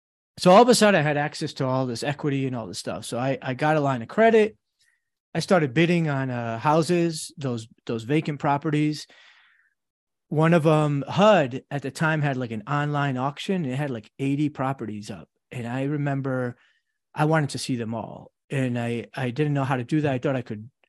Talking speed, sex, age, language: 215 wpm, male, 30-49, English